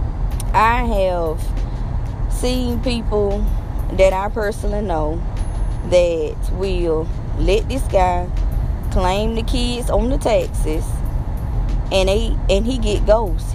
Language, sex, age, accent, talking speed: English, female, 20-39, American, 110 wpm